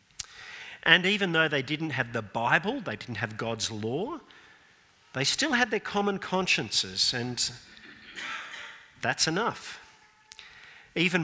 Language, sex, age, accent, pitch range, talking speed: English, male, 50-69, Australian, 110-175 Hz, 125 wpm